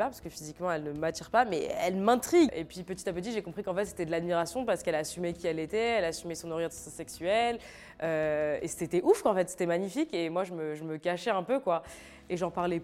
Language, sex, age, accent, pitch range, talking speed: French, female, 20-39, French, 165-210 Hz, 250 wpm